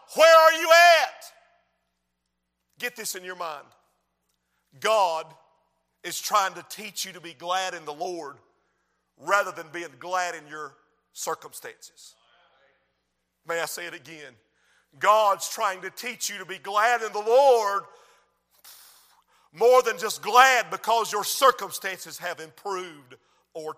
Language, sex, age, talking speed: English, male, 50-69, 135 wpm